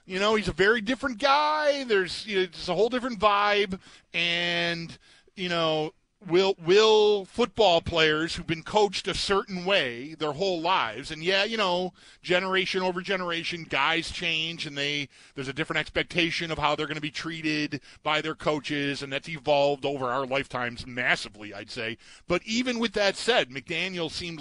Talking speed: 175 wpm